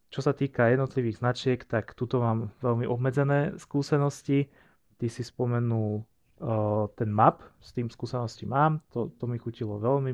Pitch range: 110-130 Hz